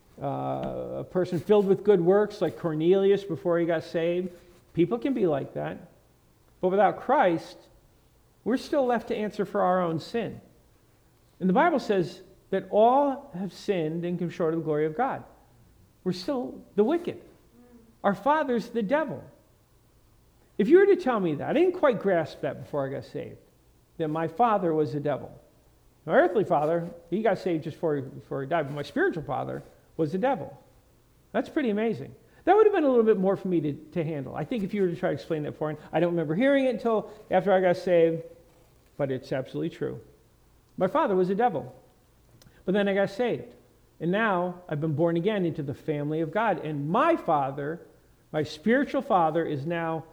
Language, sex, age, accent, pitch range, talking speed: English, male, 50-69, American, 160-210 Hz, 200 wpm